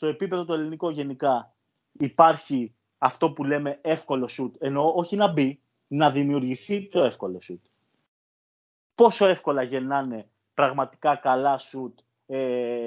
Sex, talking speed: male, 125 wpm